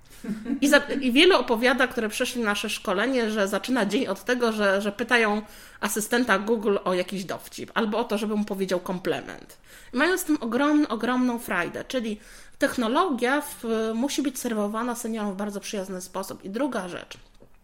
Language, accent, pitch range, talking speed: Polish, native, 215-295 Hz, 160 wpm